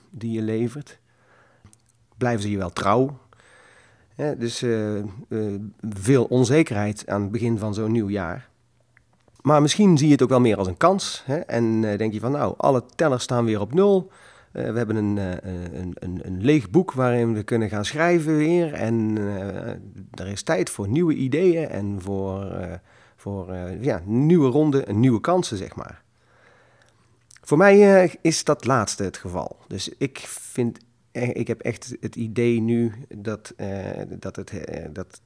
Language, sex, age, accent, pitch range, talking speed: Dutch, male, 40-59, Dutch, 100-125 Hz, 170 wpm